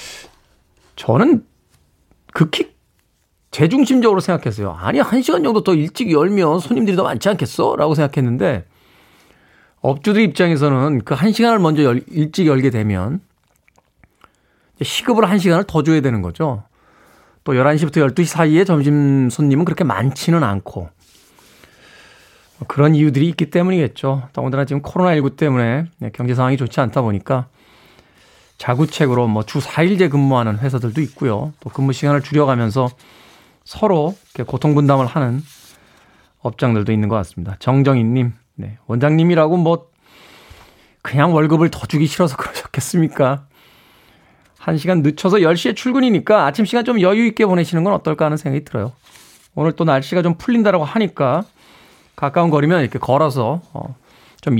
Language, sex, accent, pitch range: Korean, male, native, 125-170 Hz